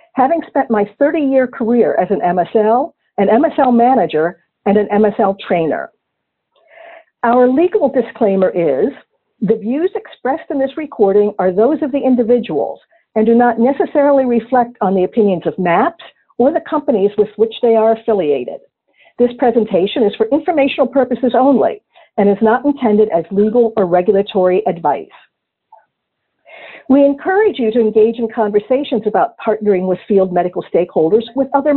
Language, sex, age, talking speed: English, female, 50-69, 150 wpm